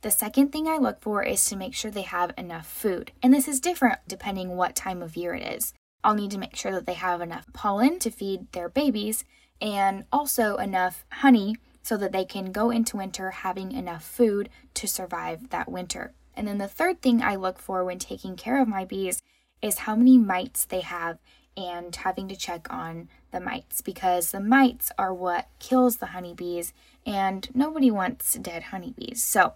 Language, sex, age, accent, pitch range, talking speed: English, female, 10-29, American, 185-250 Hz, 200 wpm